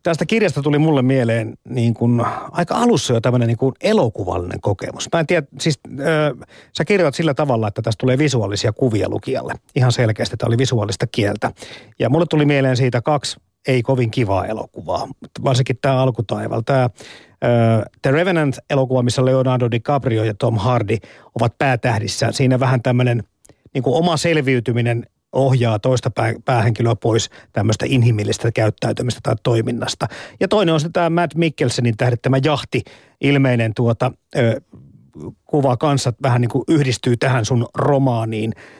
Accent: native